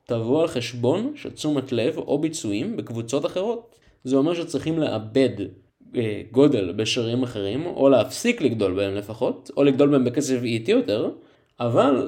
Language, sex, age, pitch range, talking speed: Hebrew, male, 20-39, 115-165 Hz, 145 wpm